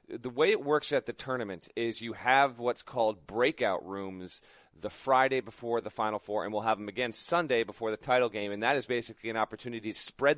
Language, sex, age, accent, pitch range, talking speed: English, male, 30-49, American, 110-130 Hz, 220 wpm